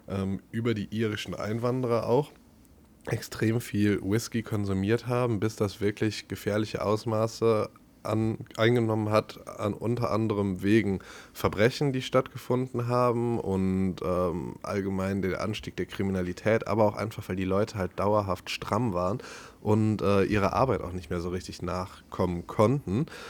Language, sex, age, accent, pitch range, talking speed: German, male, 20-39, German, 95-110 Hz, 135 wpm